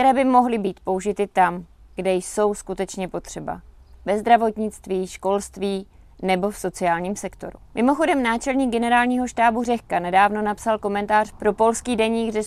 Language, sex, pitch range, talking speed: Czech, female, 190-225 Hz, 135 wpm